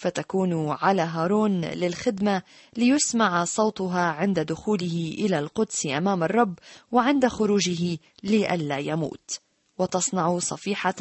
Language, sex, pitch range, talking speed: Arabic, female, 165-215 Hz, 100 wpm